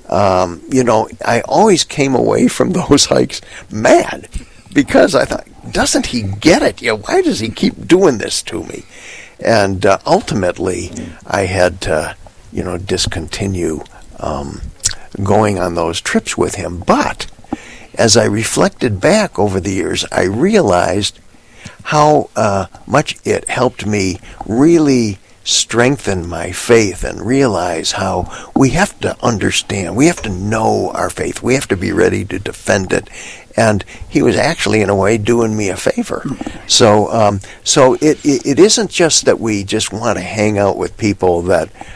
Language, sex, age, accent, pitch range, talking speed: English, male, 60-79, American, 90-110 Hz, 165 wpm